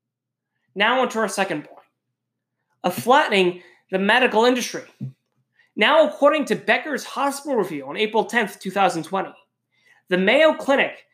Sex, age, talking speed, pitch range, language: male, 20-39, 125 wpm, 190-275 Hz, English